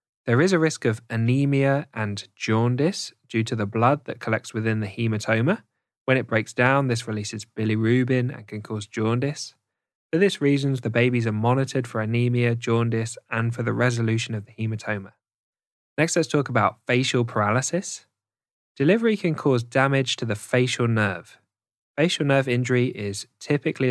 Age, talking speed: 10-29, 160 wpm